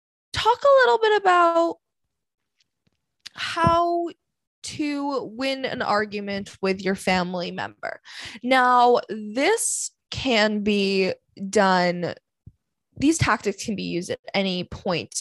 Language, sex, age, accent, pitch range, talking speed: English, female, 20-39, American, 190-250 Hz, 105 wpm